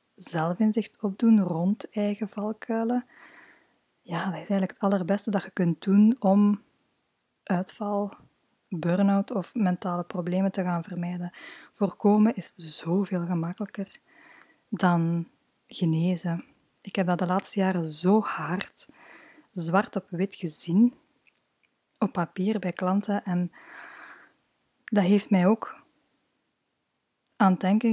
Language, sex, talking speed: Dutch, female, 115 wpm